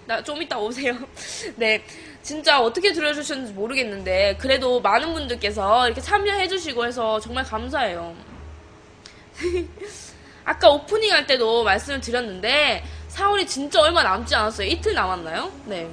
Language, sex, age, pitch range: Korean, female, 20-39, 220-355 Hz